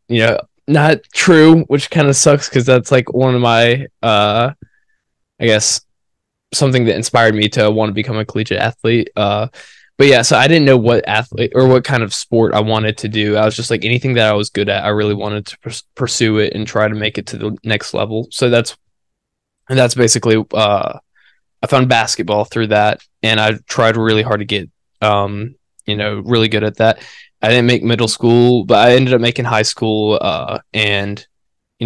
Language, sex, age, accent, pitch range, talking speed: English, male, 10-29, American, 105-125 Hz, 210 wpm